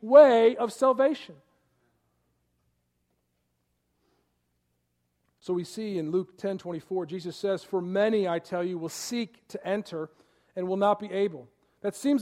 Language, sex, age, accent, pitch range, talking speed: English, male, 40-59, American, 155-230 Hz, 135 wpm